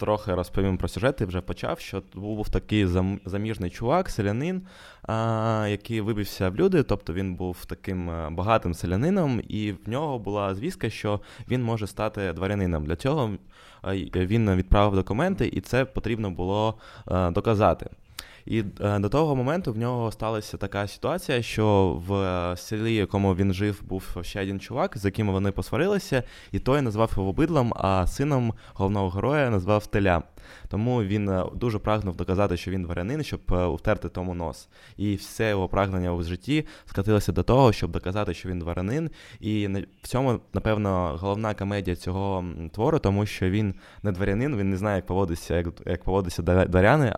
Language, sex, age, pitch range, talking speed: Ukrainian, male, 20-39, 95-110 Hz, 160 wpm